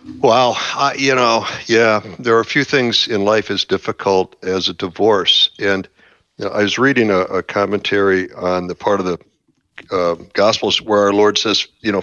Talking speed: 180 wpm